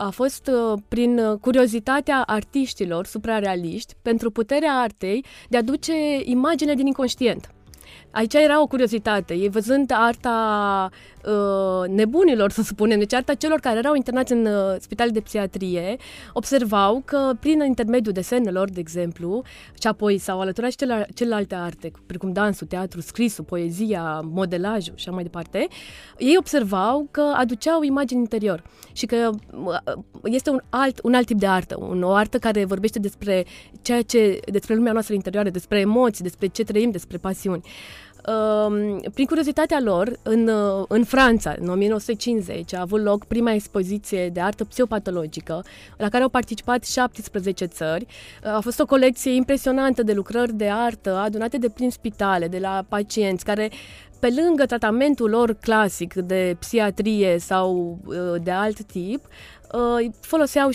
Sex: female